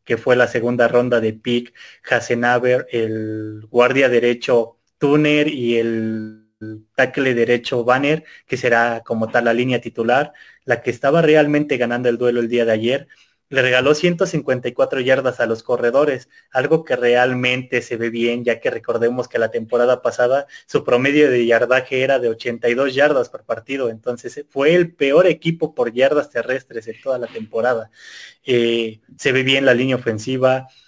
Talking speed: 165 wpm